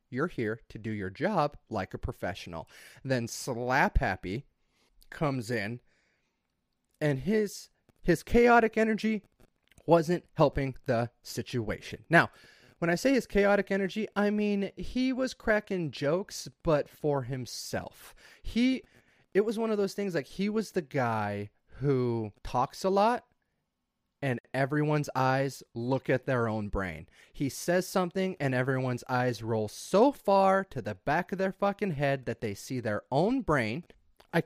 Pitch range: 125-210 Hz